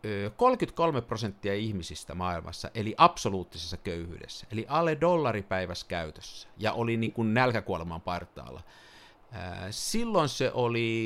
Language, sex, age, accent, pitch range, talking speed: Finnish, male, 50-69, native, 95-145 Hz, 105 wpm